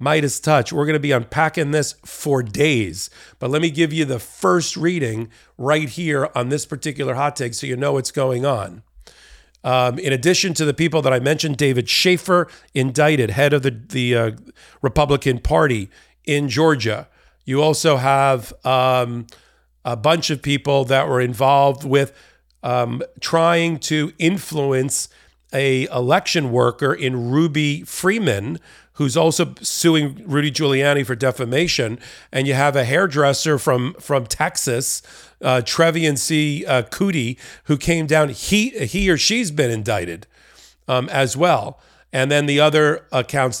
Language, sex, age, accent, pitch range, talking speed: English, male, 40-59, American, 125-155 Hz, 155 wpm